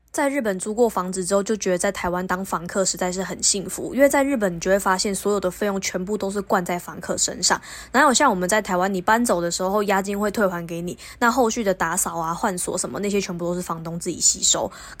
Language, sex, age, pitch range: Chinese, female, 20-39, 185-215 Hz